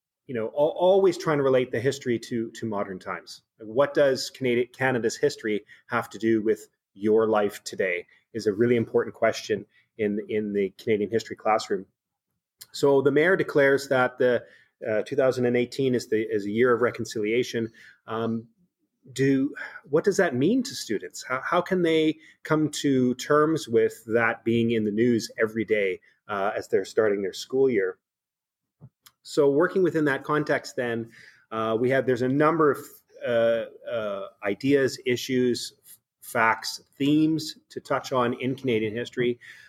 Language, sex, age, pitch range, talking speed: English, male, 30-49, 115-150 Hz, 160 wpm